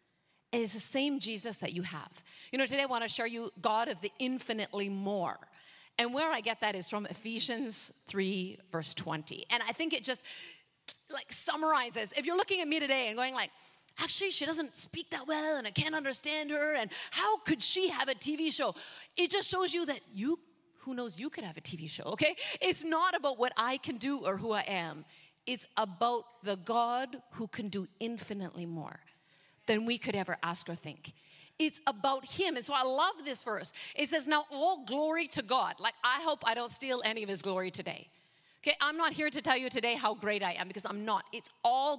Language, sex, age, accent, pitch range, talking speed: English, female, 30-49, American, 200-300 Hz, 215 wpm